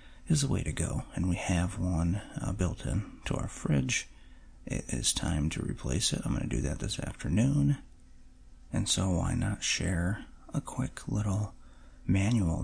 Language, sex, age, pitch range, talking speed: English, male, 30-49, 90-115 Hz, 175 wpm